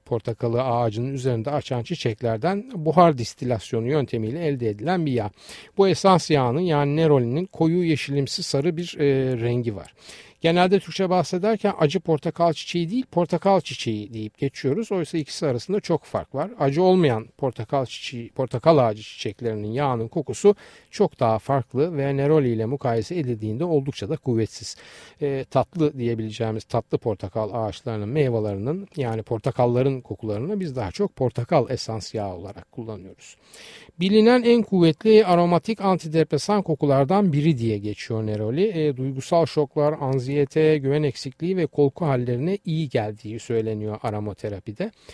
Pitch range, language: 115-165 Hz, Turkish